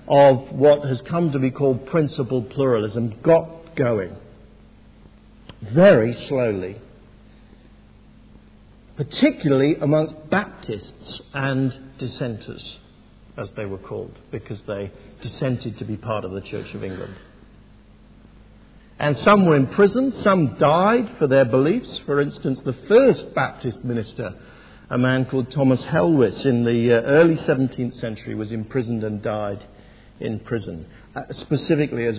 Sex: male